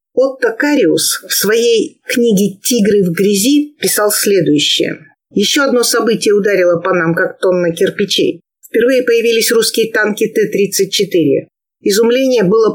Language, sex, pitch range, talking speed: Russian, female, 195-255 Hz, 120 wpm